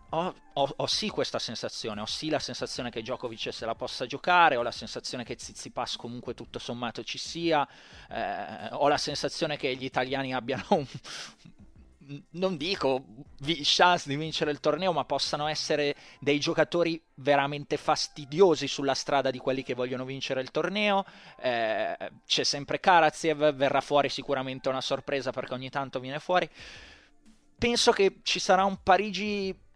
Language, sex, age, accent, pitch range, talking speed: Italian, male, 20-39, native, 125-165 Hz, 165 wpm